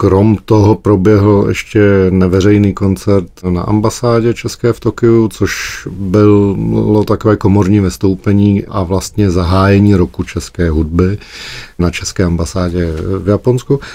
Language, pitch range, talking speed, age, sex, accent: Czech, 90-105 Hz, 115 wpm, 40-59, male, native